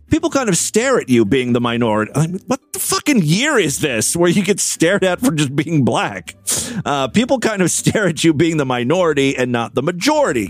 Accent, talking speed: American, 215 wpm